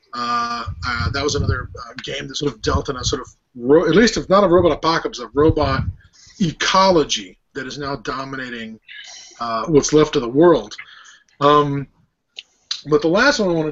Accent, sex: American, male